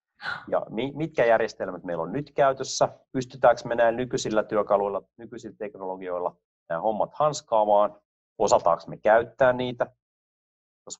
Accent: native